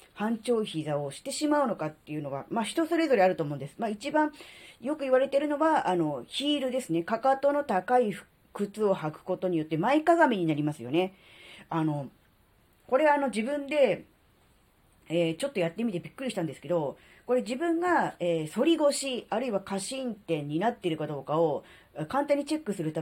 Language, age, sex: Japanese, 40-59, female